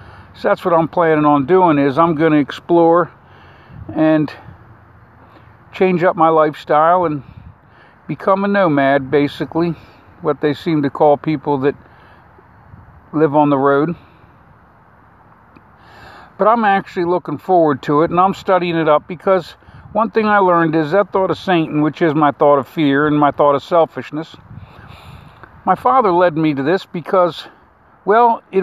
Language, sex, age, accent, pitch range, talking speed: English, male, 50-69, American, 145-185 Hz, 155 wpm